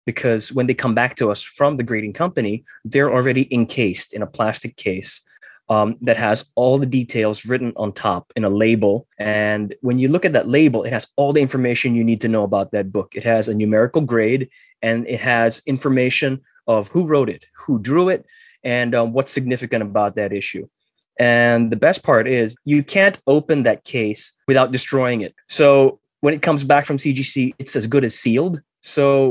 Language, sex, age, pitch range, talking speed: English, male, 20-39, 110-135 Hz, 200 wpm